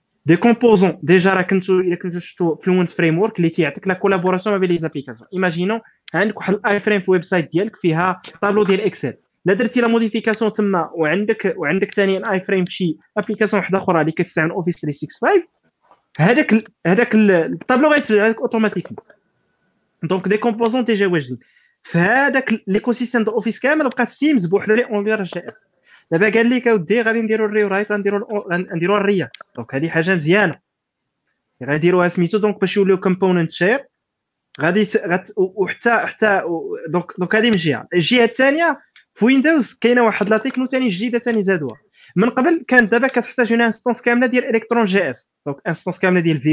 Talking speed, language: 135 wpm, Arabic